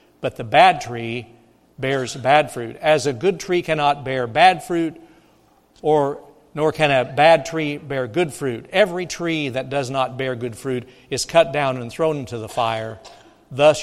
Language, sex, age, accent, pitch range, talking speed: English, male, 60-79, American, 130-170 Hz, 180 wpm